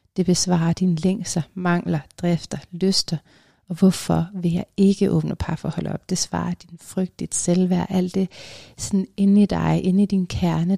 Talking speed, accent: 175 wpm, native